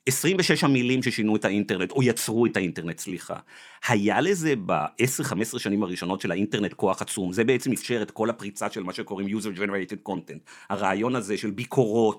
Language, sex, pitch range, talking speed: Hebrew, male, 115-180 Hz, 170 wpm